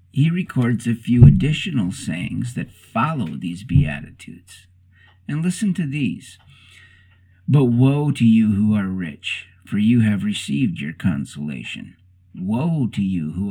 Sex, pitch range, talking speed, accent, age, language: male, 95-125 Hz, 140 wpm, American, 50-69, English